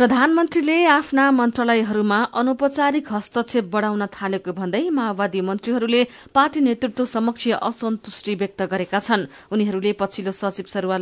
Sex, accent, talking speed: female, Indian, 105 wpm